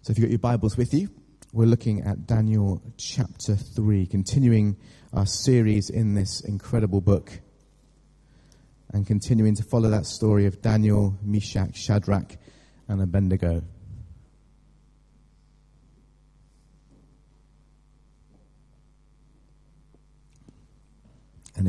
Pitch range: 95-115 Hz